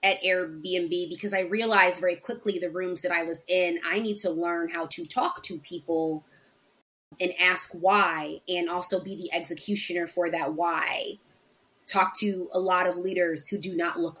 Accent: American